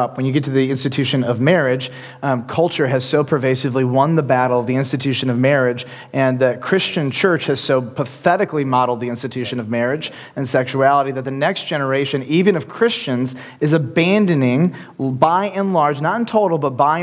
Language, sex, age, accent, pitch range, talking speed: English, male, 30-49, American, 130-160 Hz, 185 wpm